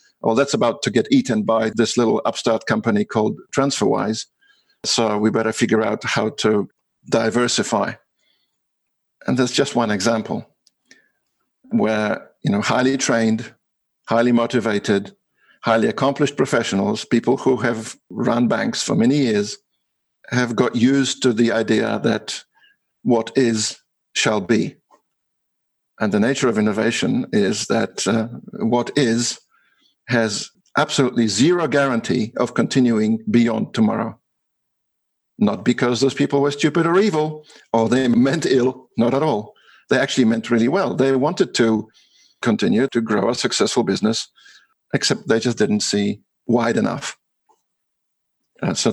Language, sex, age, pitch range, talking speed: English, male, 50-69, 115-135 Hz, 135 wpm